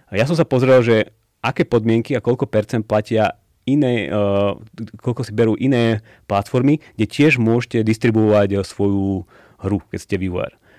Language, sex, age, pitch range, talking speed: Slovak, male, 30-49, 100-120 Hz, 150 wpm